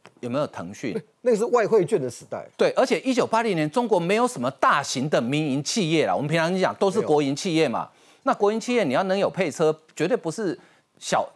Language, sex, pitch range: Chinese, male, 150-210 Hz